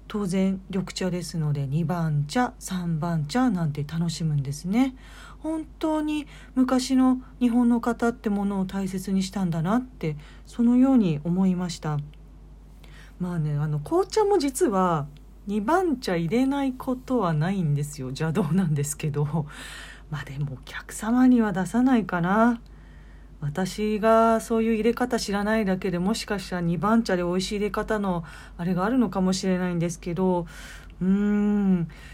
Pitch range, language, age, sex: 160-225 Hz, Japanese, 40-59, female